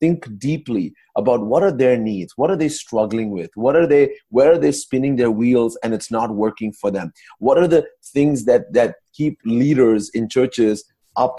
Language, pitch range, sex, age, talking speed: English, 115-155 Hz, male, 30-49, 200 wpm